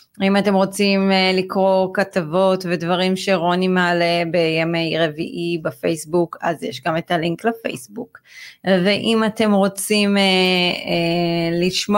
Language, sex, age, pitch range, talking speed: Hebrew, female, 30-49, 170-220 Hz, 105 wpm